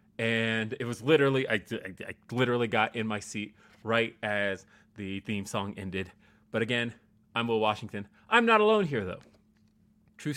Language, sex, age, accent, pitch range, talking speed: English, male, 30-49, American, 105-115 Hz, 170 wpm